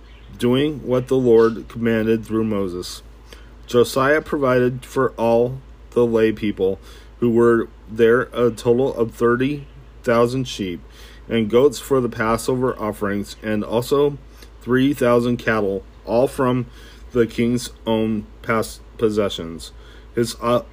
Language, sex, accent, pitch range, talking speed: English, male, American, 105-125 Hz, 120 wpm